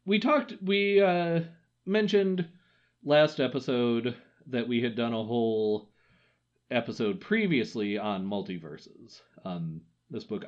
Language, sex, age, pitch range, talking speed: English, male, 40-59, 100-155 Hz, 115 wpm